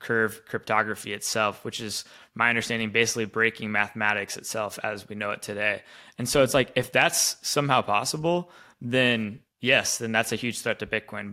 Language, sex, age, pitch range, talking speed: English, male, 20-39, 110-125 Hz, 175 wpm